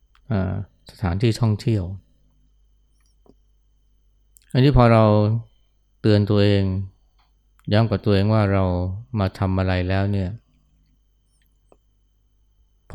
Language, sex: Thai, male